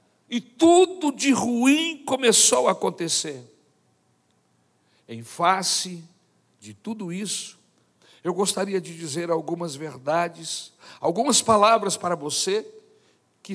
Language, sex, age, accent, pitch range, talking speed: Portuguese, male, 60-79, Brazilian, 140-230 Hz, 100 wpm